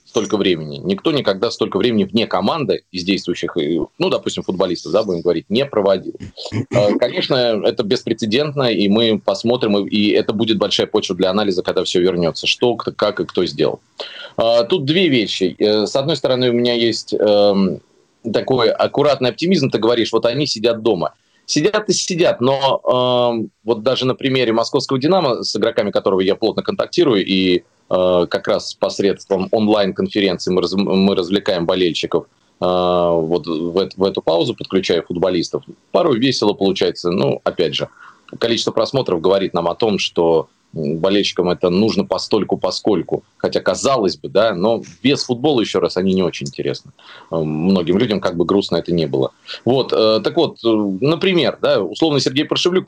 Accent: native